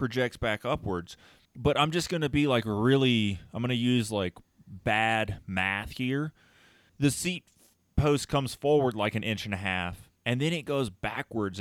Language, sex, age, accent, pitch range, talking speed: English, male, 20-39, American, 95-125 Hz, 180 wpm